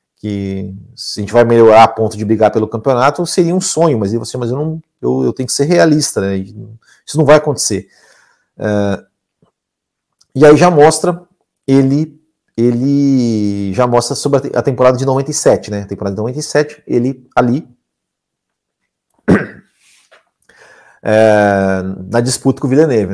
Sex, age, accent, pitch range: male, 40-59, Brazilian, 105-155 Hz